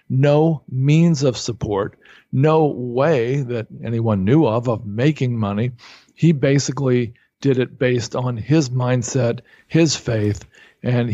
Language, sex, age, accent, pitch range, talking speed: English, male, 50-69, American, 115-140 Hz, 130 wpm